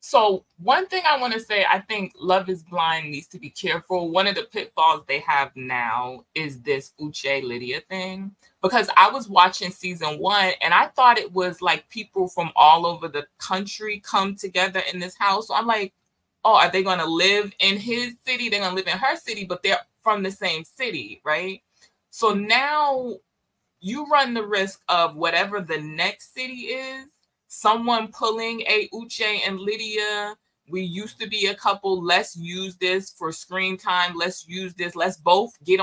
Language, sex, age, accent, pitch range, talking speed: English, female, 20-39, American, 170-215 Hz, 185 wpm